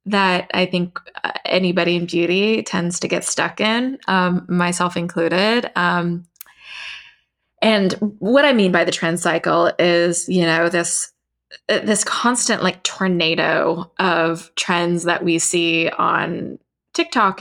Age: 20-39